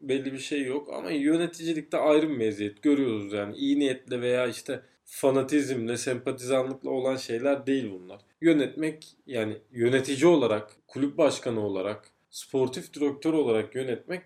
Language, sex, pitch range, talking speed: English, male, 125-165 Hz, 135 wpm